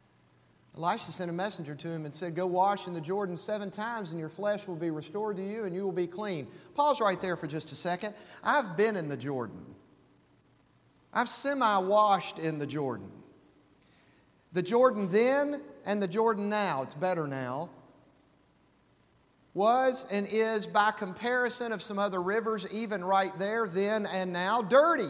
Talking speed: 170 wpm